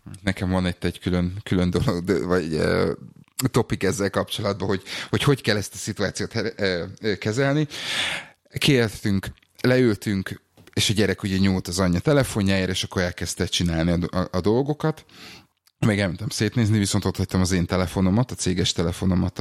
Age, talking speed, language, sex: 30-49, 160 wpm, Hungarian, male